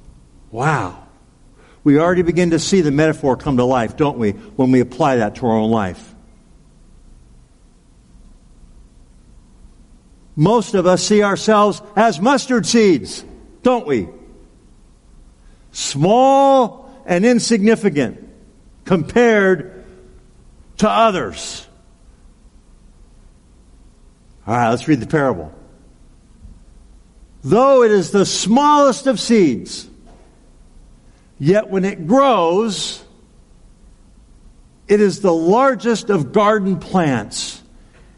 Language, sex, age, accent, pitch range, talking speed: English, male, 50-69, American, 130-215 Hz, 95 wpm